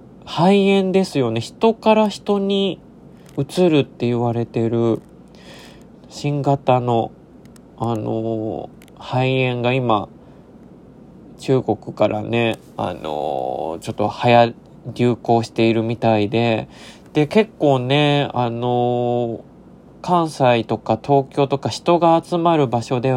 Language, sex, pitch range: Japanese, male, 120-175 Hz